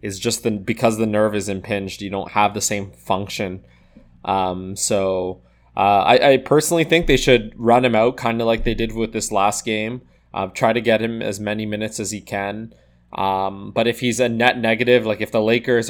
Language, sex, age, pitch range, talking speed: English, male, 20-39, 100-120 Hz, 215 wpm